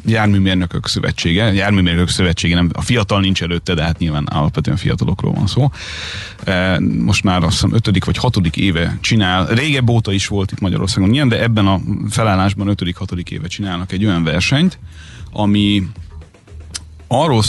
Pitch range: 90-110 Hz